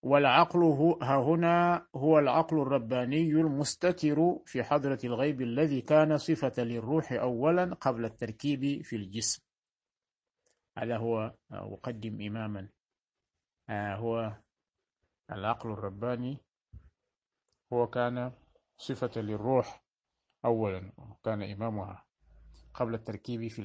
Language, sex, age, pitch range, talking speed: Arabic, male, 50-69, 110-145 Hz, 90 wpm